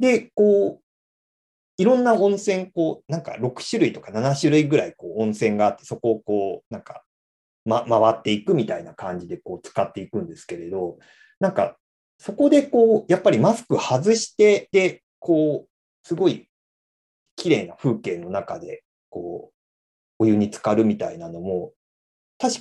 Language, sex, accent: Japanese, male, native